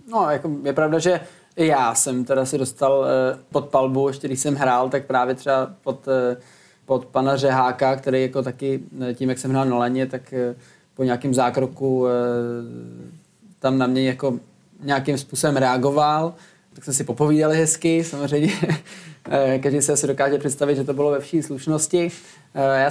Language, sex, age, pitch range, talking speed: Czech, male, 20-39, 135-155 Hz, 155 wpm